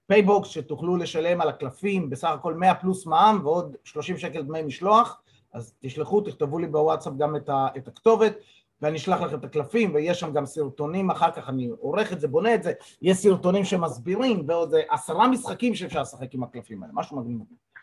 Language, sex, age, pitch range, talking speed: Hebrew, male, 30-49, 135-180 Hz, 185 wpm